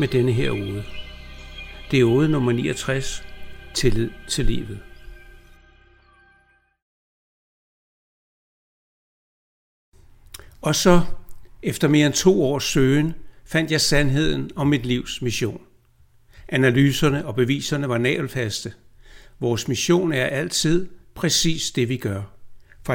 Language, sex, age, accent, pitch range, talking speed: Danish, male, 60-79, native, 120-155 Hz, 105 wpm